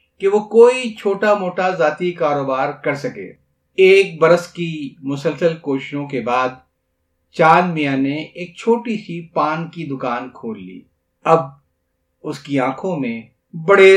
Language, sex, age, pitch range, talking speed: Urdu, male, 50-69, 140-205 Hz, 140 wpm